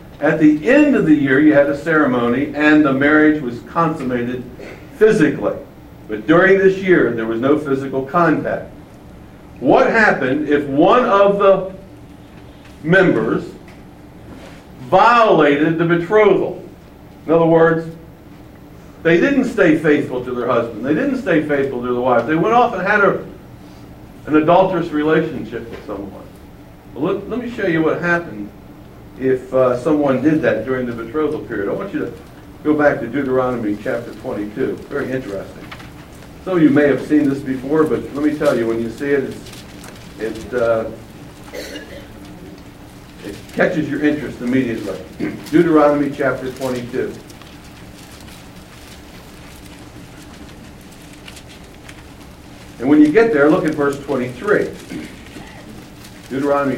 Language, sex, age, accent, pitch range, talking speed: English, male, 60-79, American, 125-165 Hz, 135 wpm